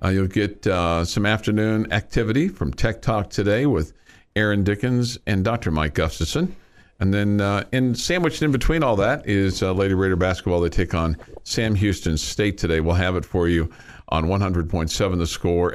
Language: English